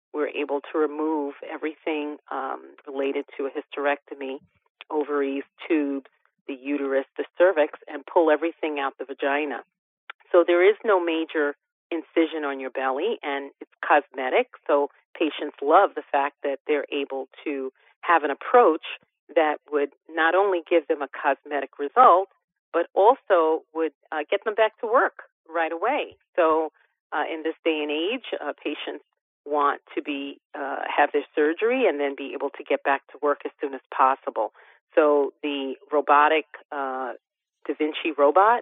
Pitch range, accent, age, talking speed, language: 140-165 Hz, American, 40-59, 160 wpm, English